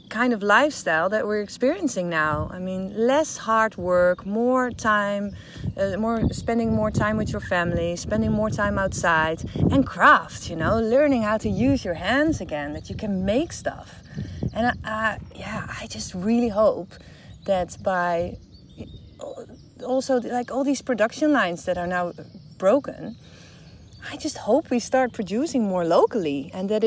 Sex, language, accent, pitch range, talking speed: female, English, Dutch, 165-230 Hz, 160 wpm